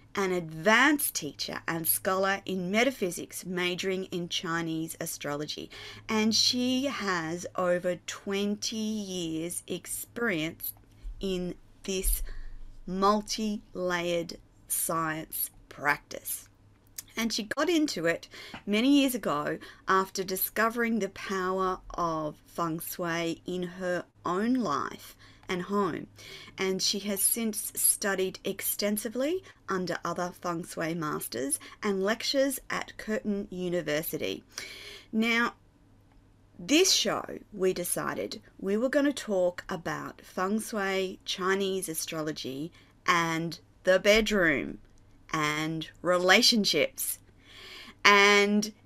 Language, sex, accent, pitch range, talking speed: English, female, Australian, 165-215 Hz, 100 wpm